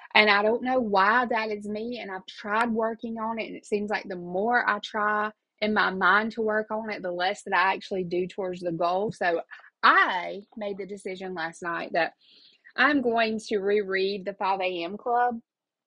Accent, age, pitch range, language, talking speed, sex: American, 30-49, 180-210 Hz, English, 205 wpm, female